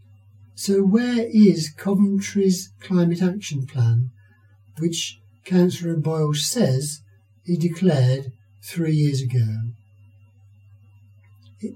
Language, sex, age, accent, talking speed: English, male, 60-79, British, 85 wpm